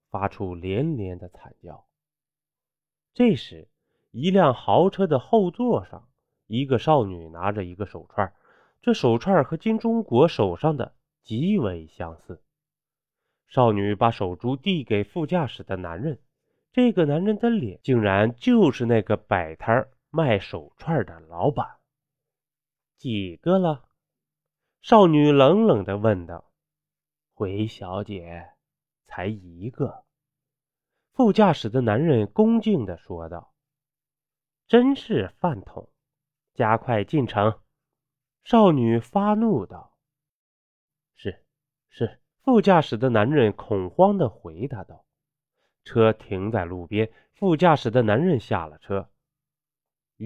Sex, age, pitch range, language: male, 20-39, 100-155 Hz, Chinese